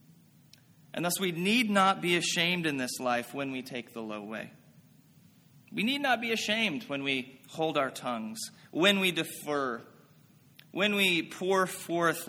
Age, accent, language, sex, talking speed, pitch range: 30-49, American, English, male, 160 wpm, 135-180 Hz